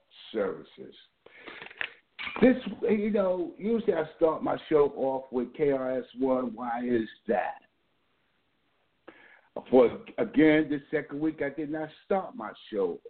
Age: 60-79